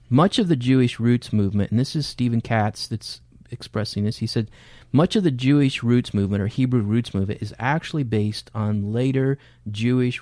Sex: male